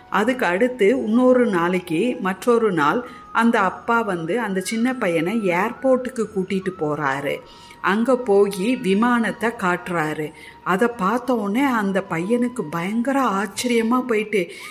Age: 50-69